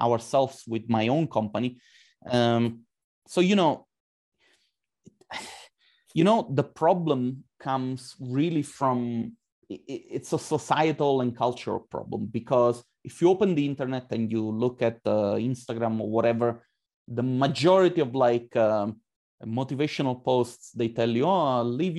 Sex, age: male, 30-49